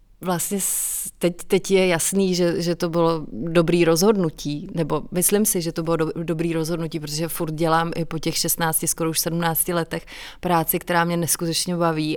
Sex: female